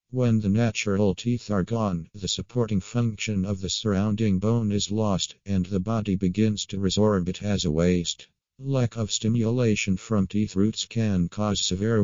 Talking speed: 170 wpm